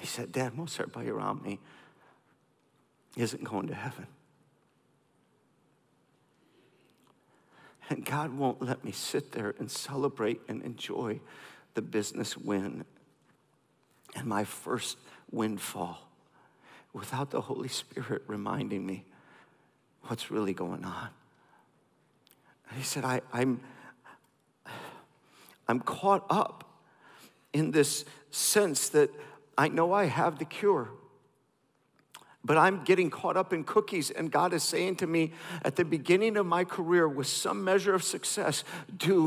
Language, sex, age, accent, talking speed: English, male, 50-69, American, 125 wpm